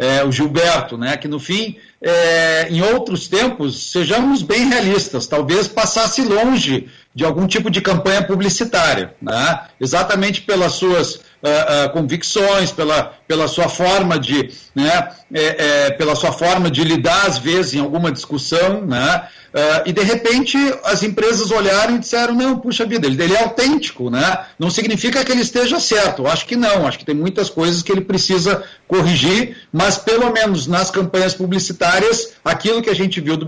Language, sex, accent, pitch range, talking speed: Portuguese, male, Brazilian, 155-220 Hz, 170 wpm